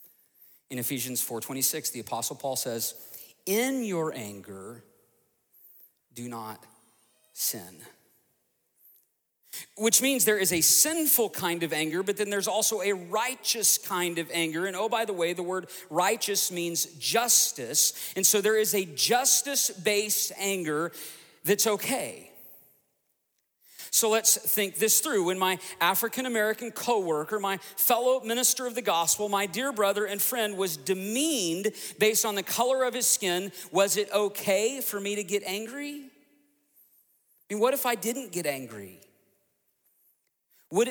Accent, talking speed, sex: American, 140 wpm, male